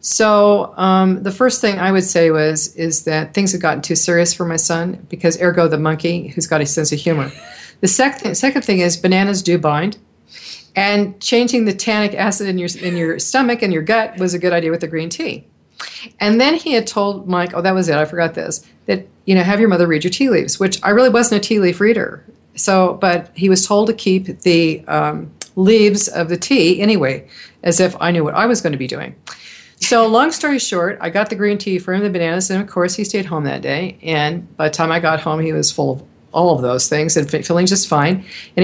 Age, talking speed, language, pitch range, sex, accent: 50-69, 240 wpm, English, 165-205 Hz, female, American